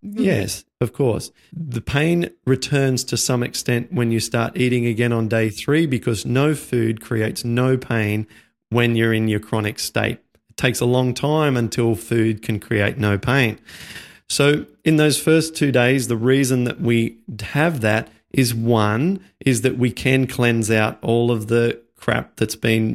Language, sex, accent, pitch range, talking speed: English, male, Australian, 110-135 Hz, 175 wpm